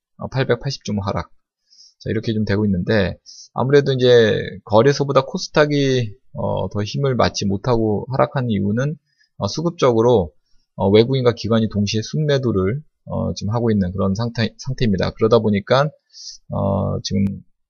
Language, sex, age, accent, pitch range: Korean, male, 20-39, native, 100-145 Hz